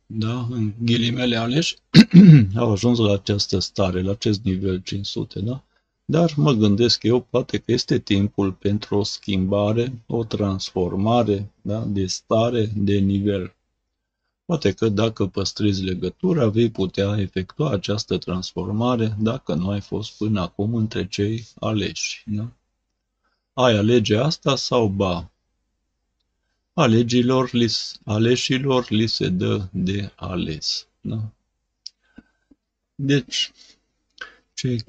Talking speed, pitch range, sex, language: 115 wpm, 95-120 Hz, male, Romanian